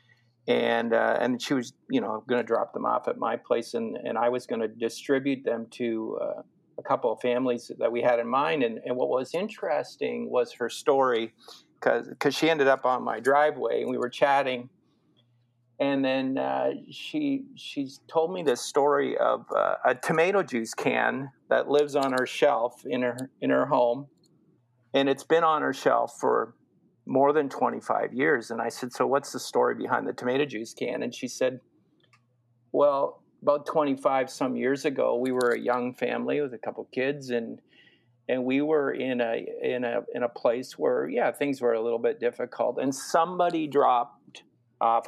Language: English